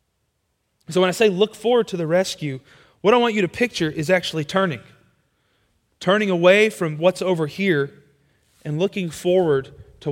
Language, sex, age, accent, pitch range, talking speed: English, male, 30-49, American, 140-200 Hz, 165 wpm